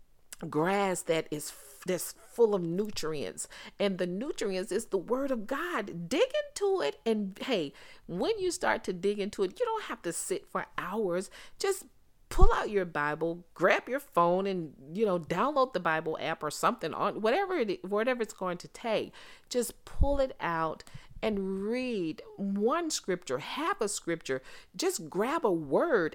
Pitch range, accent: 160-245 Hz, American